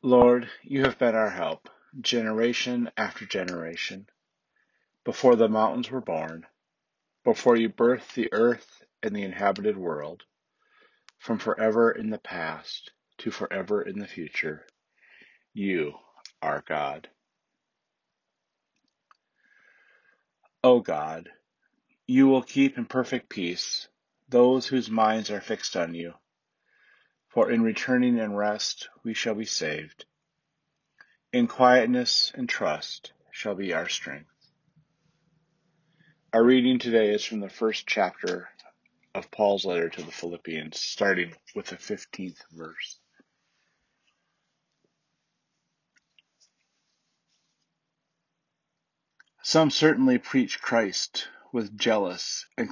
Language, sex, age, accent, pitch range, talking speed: English, male, 40-59, American, 105-130 Hz, 105 wpm